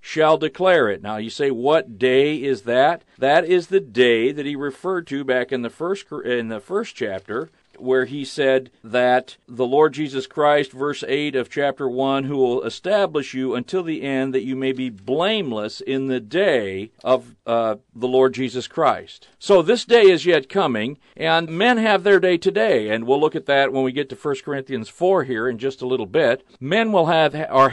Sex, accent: male, American